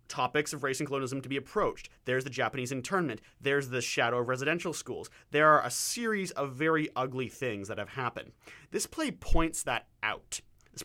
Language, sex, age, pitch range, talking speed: English, male, 30-49, 120-155 Hz, 195 wpm